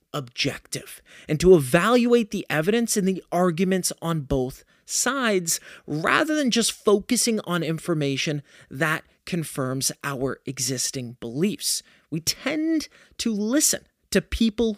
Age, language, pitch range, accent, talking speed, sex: 30-49, English, 150-225 Hz, American, 120 wpm, male